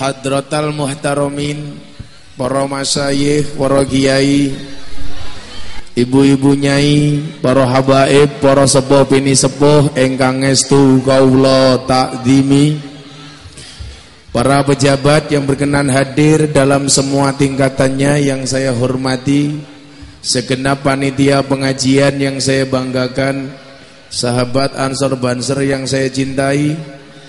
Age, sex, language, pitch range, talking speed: 20-39, male, Indonesian, 125-140 Hz, 85 wpm